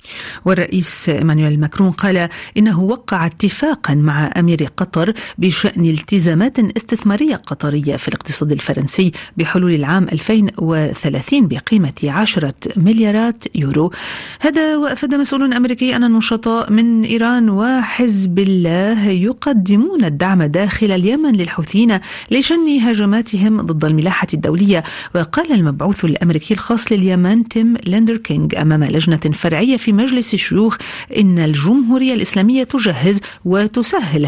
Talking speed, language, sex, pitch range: 110 wpm, Arabic, female, 170-225 Hz